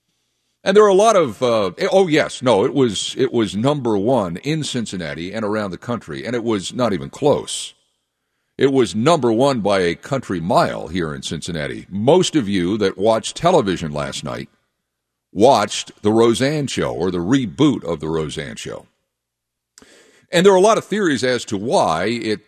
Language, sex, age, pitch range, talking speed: English, male, 60-79, 95-140 Hz, 185 wpm